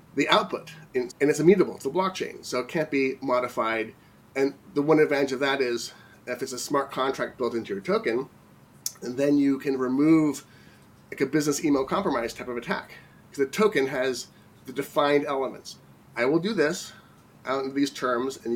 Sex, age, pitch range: male, 30-49, 125-155 Hz